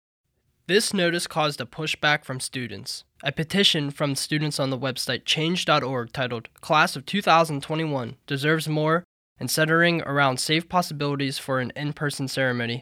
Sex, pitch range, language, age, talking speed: male, 130-160 Hz, English, 10-29, 140 wpm